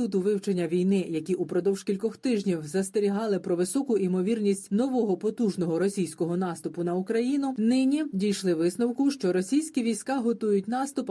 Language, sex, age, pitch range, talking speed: Ukrainian, female, 30-49, 180-230 Hz, 135 wpm